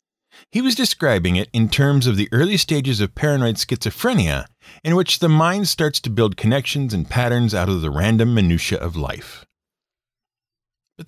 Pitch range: 105-155 Hz